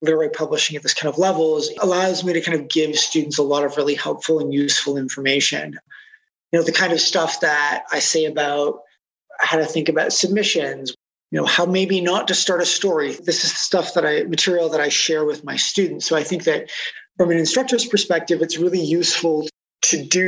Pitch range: 155-195 Hz